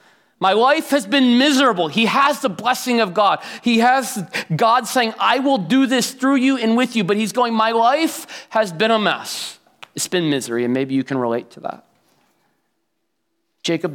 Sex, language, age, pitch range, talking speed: male, English, 30-49, 125-150 Hz, 190 wpm